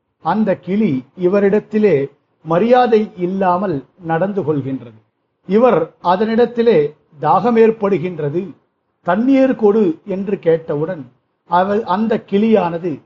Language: Tamil